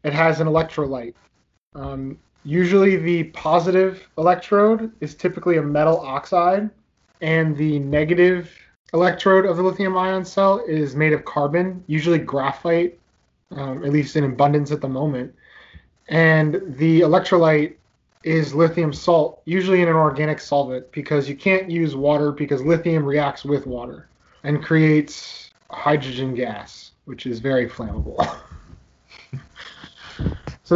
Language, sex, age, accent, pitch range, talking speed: English, male, 20-39, American, 145-175 Hz, 130 wpm